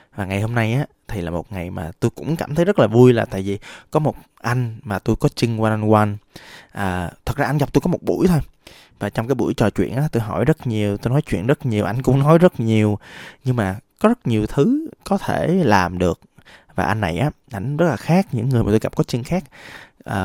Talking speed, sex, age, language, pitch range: 260 wpm, male, 20-39, Vietnamese, 100-135 Hz